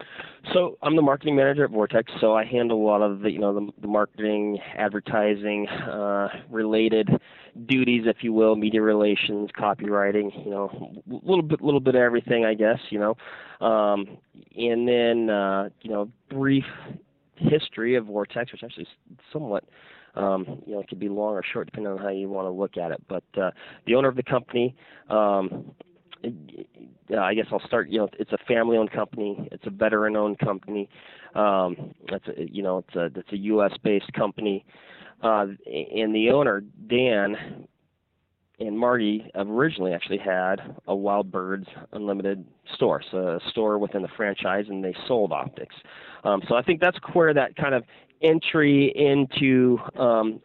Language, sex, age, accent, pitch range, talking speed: English, male, 30-49, American, 100-120 Hz, 170 wpm